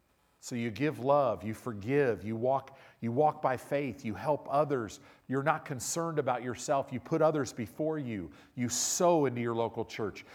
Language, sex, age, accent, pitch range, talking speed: English, male, 40-59, American, 120-165 Hz, 180 wpm